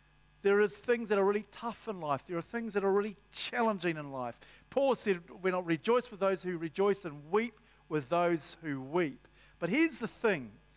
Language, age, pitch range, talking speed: English, 50-69, 150-205 Hz, 205 wpm